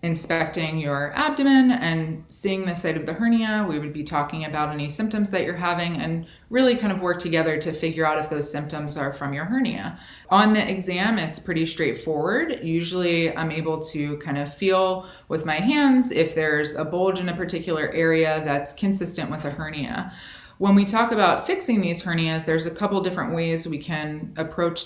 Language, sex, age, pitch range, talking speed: English, female, 20-39, 155-190 Hz, 195 wpm